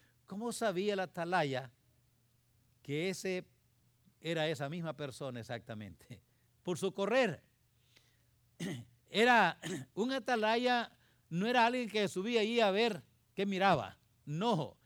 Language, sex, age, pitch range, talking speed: English, male, 50-69, 160-225 Hz, 115 wpm